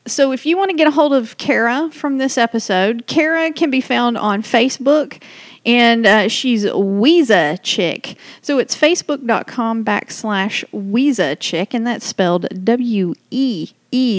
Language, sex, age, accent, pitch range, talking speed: English, female, 40-59, American, 205-255 Hz, 150 wpm